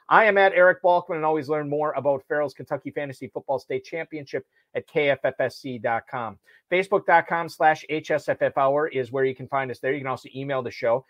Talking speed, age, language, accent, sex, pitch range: 185 wpm, 30-49, English, American, male, 130-155 Hz